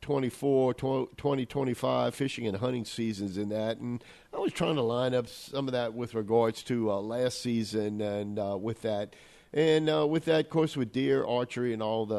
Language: English